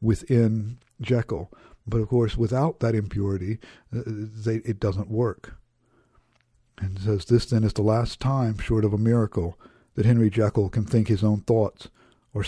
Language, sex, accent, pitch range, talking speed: English, male, American, 105-125 Hz, 165 wpm